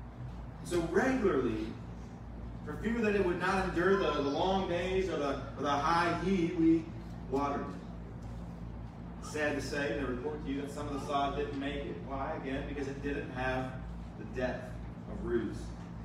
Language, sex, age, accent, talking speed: English, male, 30-49, American, 180 wpm